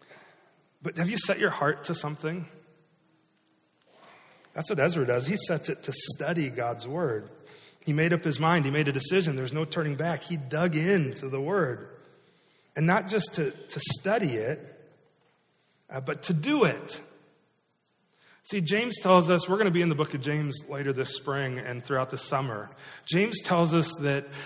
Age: 30-49